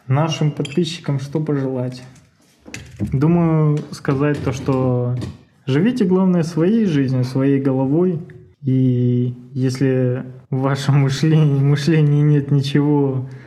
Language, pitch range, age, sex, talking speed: Russian, 130-150 Hz, 20-39, male, 100 wpm